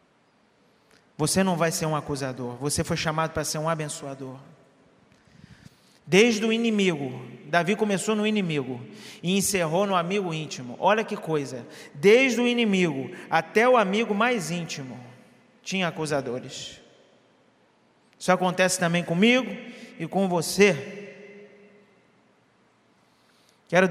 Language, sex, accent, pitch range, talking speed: Portuguese, male, Brazilian, 155-210 Hz, 115 wpm